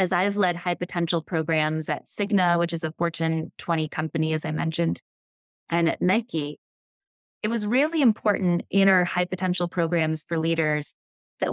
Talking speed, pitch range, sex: 165 wpm, 165-205 Hz, female